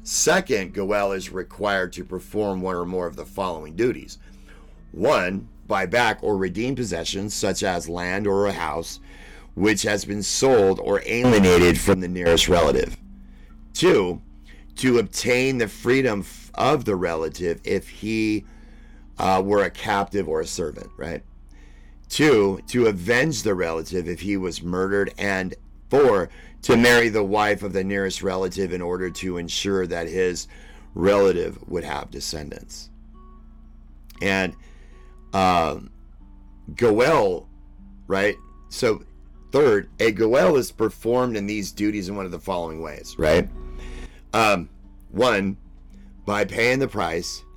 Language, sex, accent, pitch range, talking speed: English, male, American, 75-100 Hz, 135 wpm